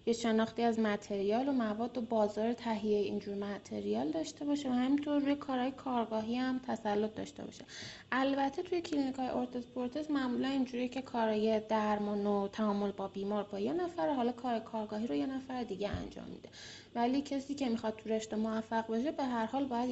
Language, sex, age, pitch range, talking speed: Persian, female, 30-49, 215-265 Hz, 180 wpm